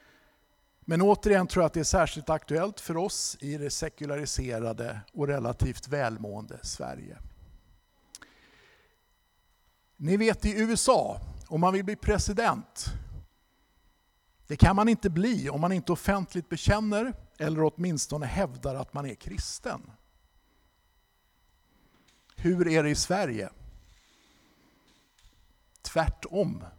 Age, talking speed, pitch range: 50-69, 110 wpm, 125-180 Hz